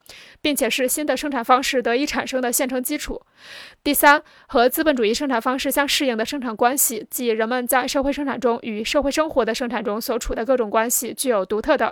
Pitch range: 240-285 Hz